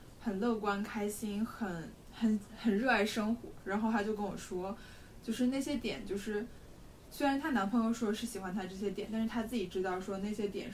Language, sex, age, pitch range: Chinese, female, 10-29, 200-250 Hz